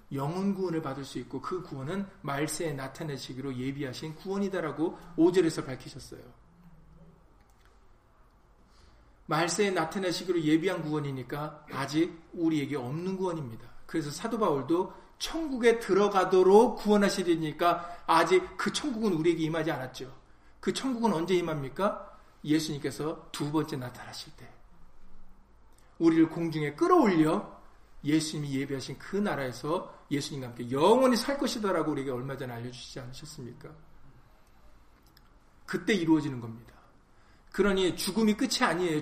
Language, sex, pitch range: Korean, male, 150-210 Hz